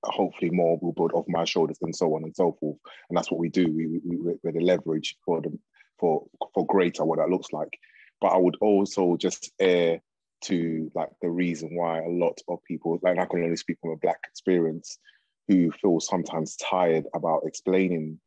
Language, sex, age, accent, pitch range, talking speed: English, male, 20-39, British, 85-100 Hz, 205 wpm